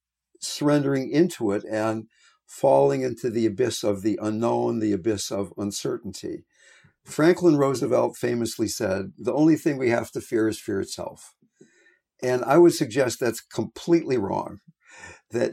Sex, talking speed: male, 145 wpm